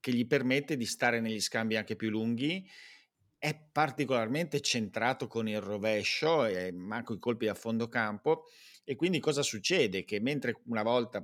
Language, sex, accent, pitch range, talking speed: Italian, male, native, 105-140 Hz, 165 wpm